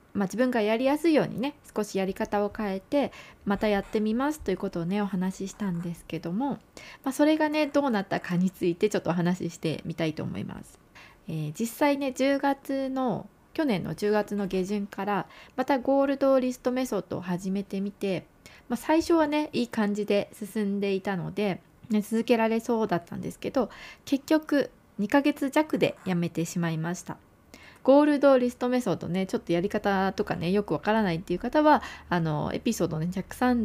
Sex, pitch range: female, 180-255 Hz